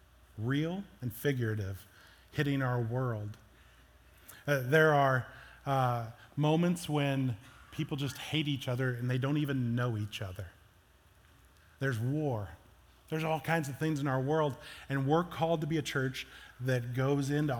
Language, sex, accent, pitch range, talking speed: English, male, American, 120-155 Hz, 150 wpm